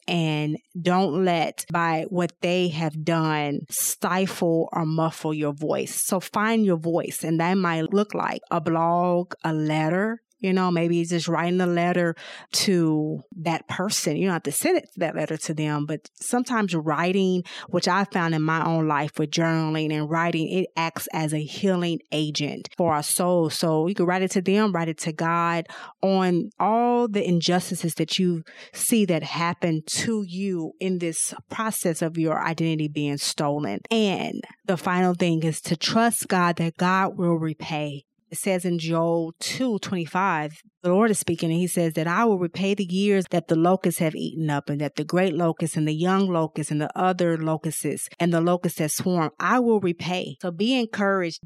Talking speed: 190 wpm